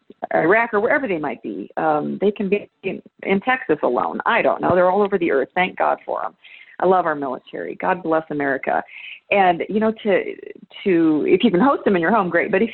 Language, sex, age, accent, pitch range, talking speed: English, female, 40-59, American, 150-195 Hz, 230 wpm